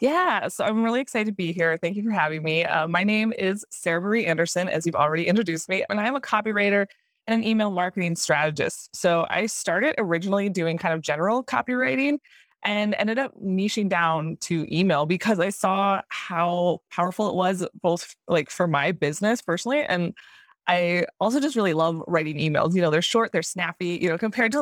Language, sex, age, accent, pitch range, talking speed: English, female, 20-39, American, 160-215 Hz, 195 wpm